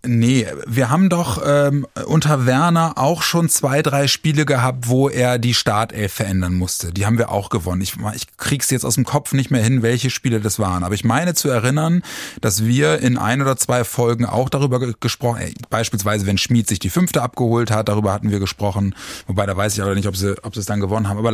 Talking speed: 230 wpm